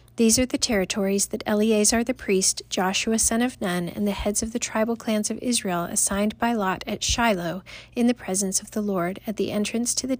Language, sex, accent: English, female, American